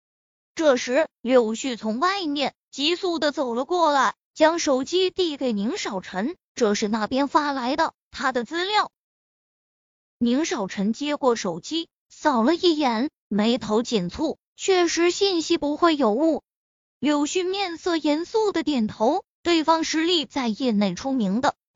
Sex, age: female, 20-39